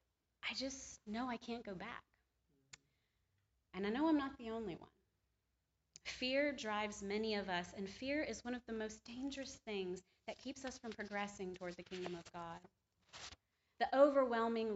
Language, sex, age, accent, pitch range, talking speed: English, female, 30-49, American, 175-225 Hz, 165 wpm